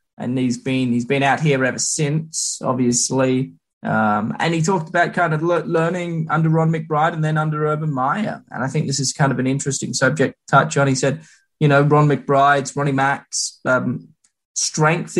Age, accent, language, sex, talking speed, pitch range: 20-39, Australian, English, male, 195 wpm, 135-160 Hz